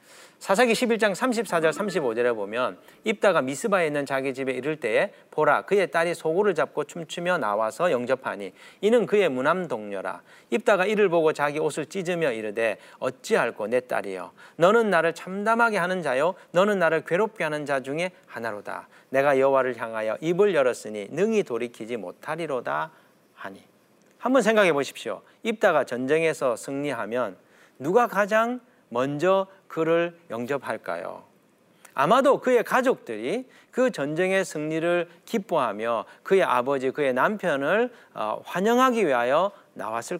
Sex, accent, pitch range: male, native, 135-210 Hz